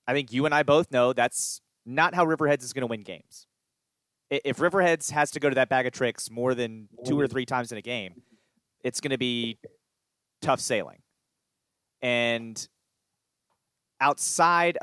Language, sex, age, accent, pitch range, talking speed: English, male, 30-49, American, 120-150 Hz, 175 wpm